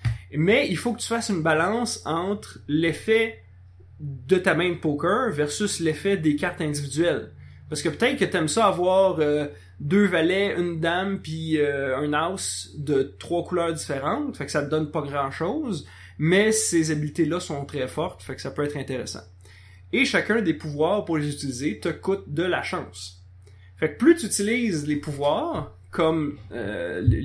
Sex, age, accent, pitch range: male, 30-49, Canadian, 135-190 Hz